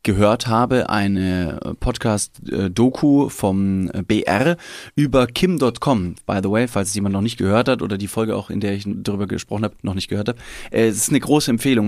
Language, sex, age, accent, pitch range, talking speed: German, male, 20-39, German, 110-135 Hz, 185 wpm